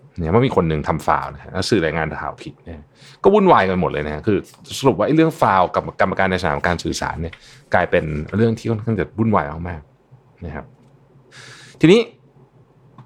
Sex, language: male, Thai